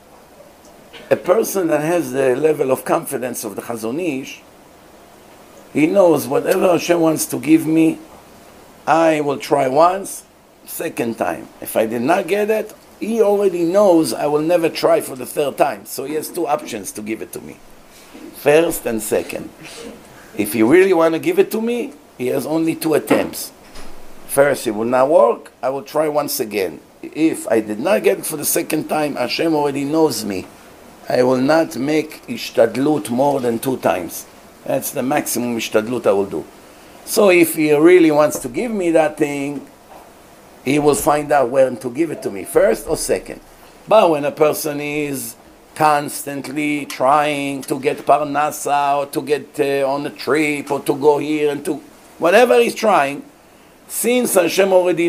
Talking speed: 175 wpm